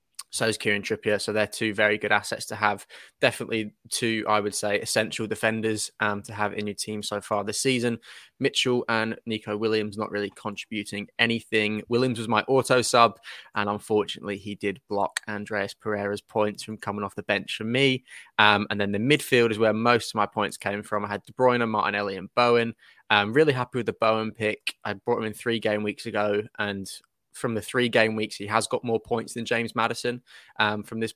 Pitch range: 105-115 Hz